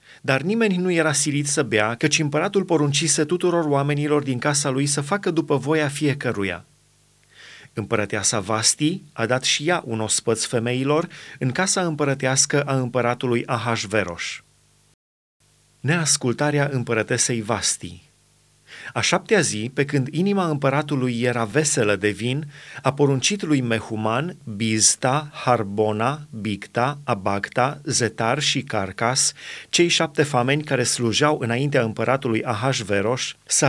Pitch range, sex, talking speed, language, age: 120-150 Hz, male, 125 wpm, Romanian, 30-49